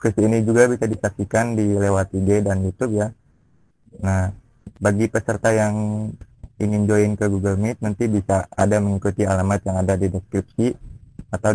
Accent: native